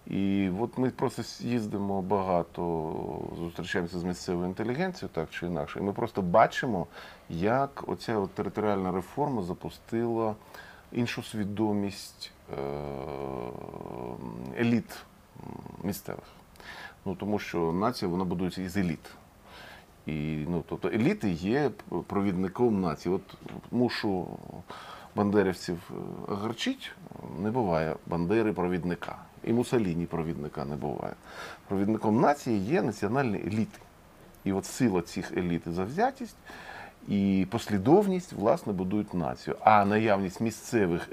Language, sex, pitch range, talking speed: Ukrainian, male, 85-110 Hz, 110 wpm